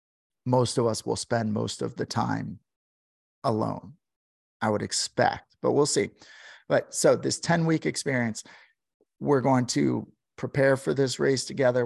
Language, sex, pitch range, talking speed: English, male, 105-125 Hz, 145 wpm